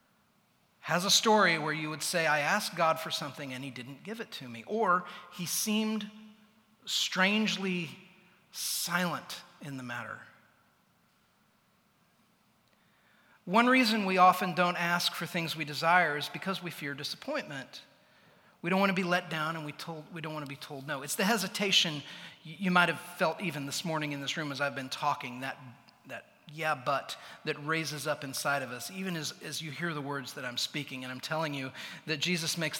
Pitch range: 150-180 Hz